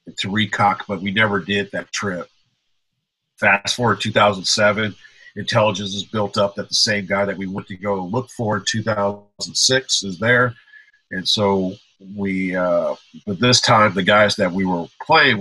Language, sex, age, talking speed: English, male, 50-69, 170 wpm